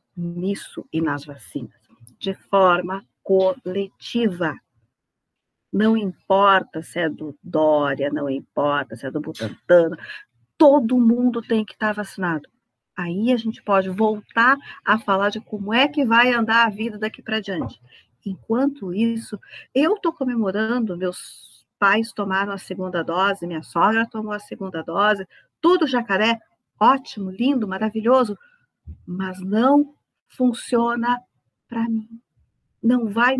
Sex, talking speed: female, 130 wpm